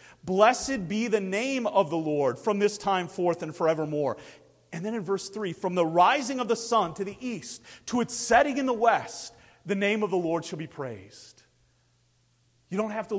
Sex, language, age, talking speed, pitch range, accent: male, English, 40-59, 205 wpm, 135-210 Hz, American